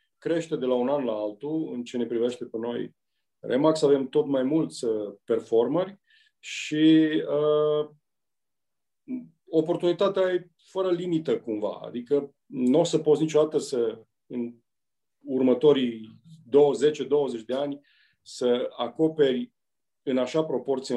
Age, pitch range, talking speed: 40-59, 120-160 Hz, 125 wpm